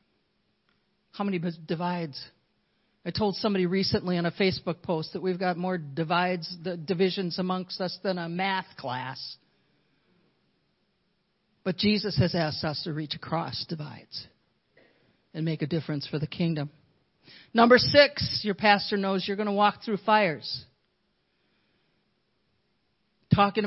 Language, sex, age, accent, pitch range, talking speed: English, male, 50-69, American, 175-220 Hz, 130 wpm